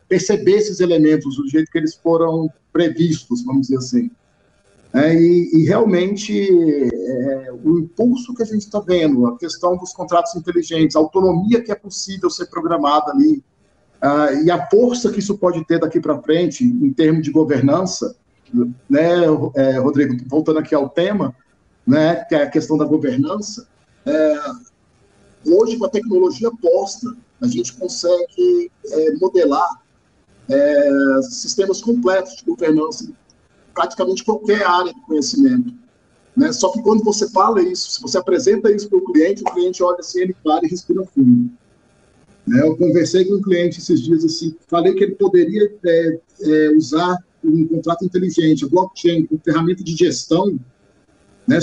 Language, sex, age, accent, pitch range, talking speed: Portuguese, male, 50-69, Brazilian, 155-210 Hz, 160 wpm